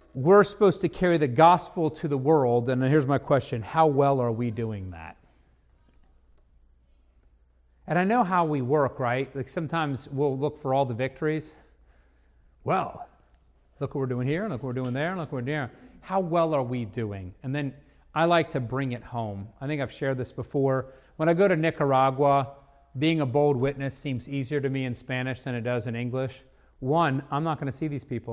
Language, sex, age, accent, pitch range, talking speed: English, male, 40-59, American, 115-155 Hz, 205 wpm